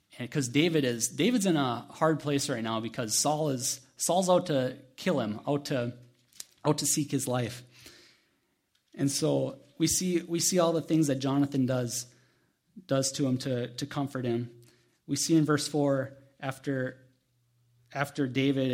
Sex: male